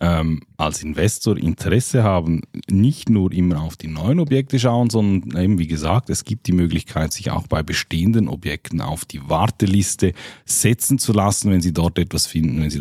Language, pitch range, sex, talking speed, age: German, 90-115 Hz, male, 185 wpm, 10-29